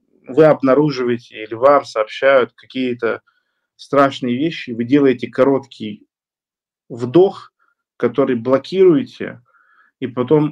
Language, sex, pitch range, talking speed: Russian, male, 120-160 Hz, 90 wpm